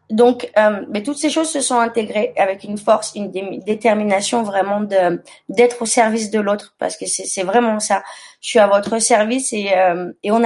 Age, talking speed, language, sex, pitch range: 20-39, 210 wpm, French, female, 205-245 Hz